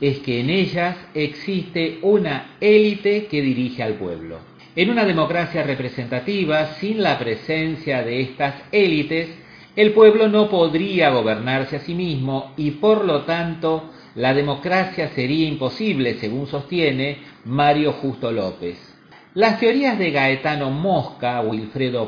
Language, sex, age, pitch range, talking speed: Spanish, male, 40-59, 135-190 Hz, 130 wpm